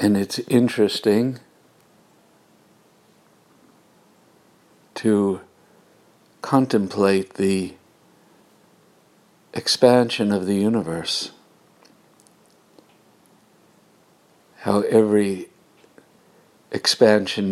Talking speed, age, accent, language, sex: 45 wpm, 60-79, American, English, male